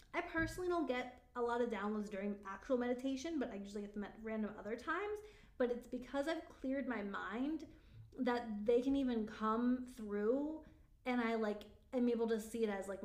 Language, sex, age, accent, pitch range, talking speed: English, female, 20-39, American, 210-270 Hz, 200 wpm